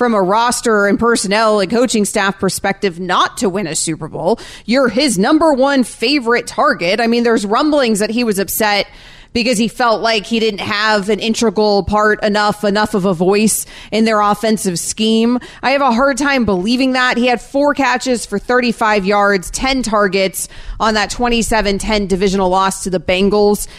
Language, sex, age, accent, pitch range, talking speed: English, female, 30-49, American, 200-235 Hz, 180 wpm